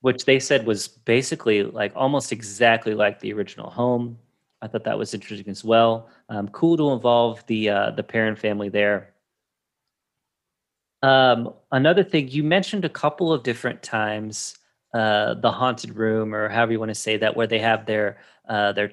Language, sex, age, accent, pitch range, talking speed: English, male, 30-49, American, 110-145 Hz, 180 wpm